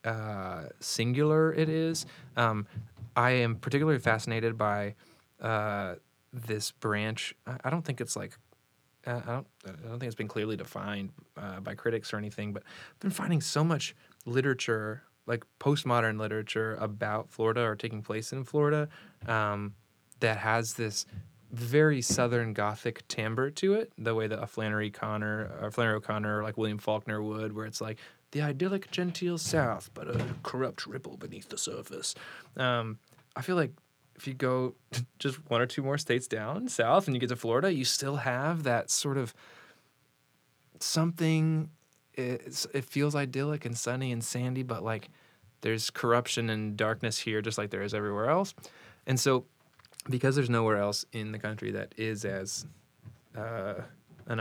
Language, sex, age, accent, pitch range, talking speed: English, male, 20-39, American, 105-135 Hz, 165 wpm